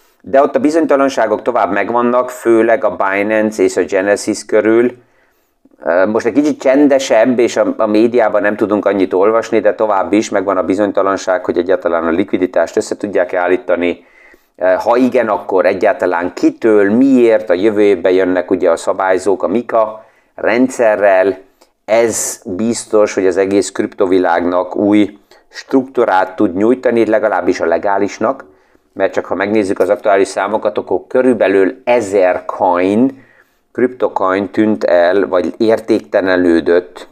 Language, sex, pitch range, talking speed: Hungarian, male, 95-120 Hz, 130 wpm